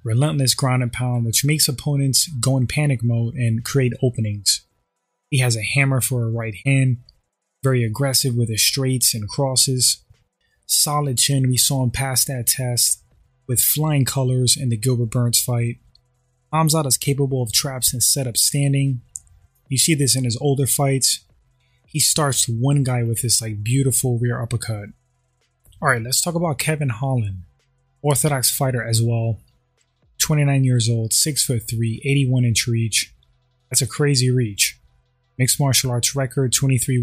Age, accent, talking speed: 20-39, American, 160 wpm